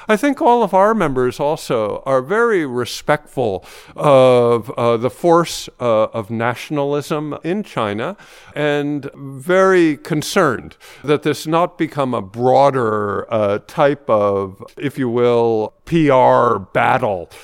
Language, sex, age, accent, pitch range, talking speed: English, male, 50-69, American, 120-155 Hz, 125 wpm